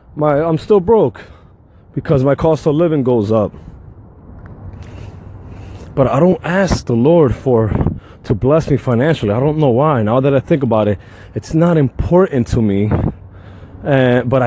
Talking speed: 160 wpm